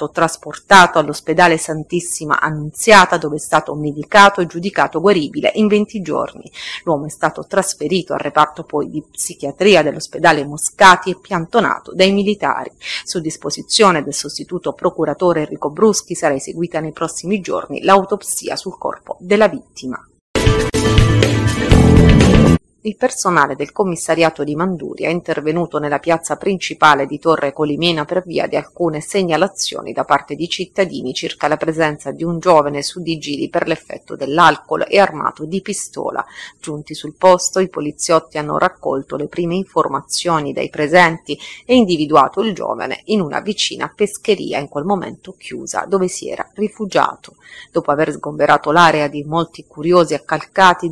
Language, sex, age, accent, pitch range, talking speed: Italian, female, 30-49, native, 150-185 Hz, 140 wpm